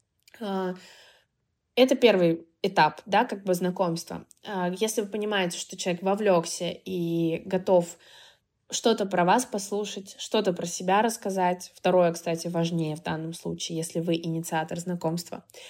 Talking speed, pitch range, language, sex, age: 125 wpm, 175-205 Hz, Russian, female, 20-39